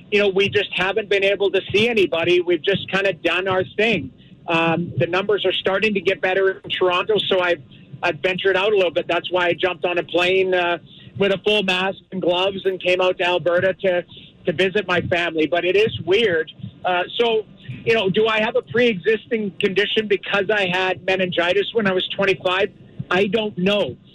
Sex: male